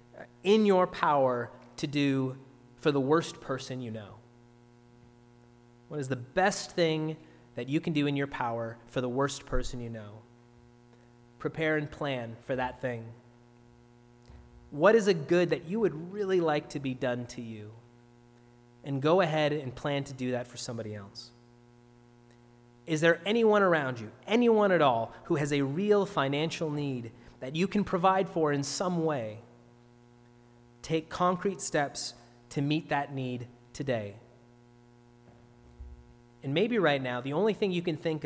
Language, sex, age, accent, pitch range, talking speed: English, male, 30-49, American, 120-155 Hz, 155 wpm